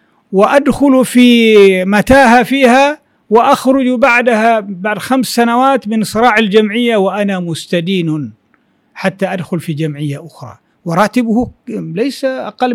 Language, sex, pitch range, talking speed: Arabic, male, 185-245 Hz, 105 wpm